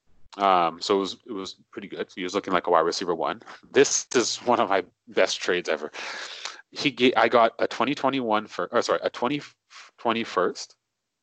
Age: 30-49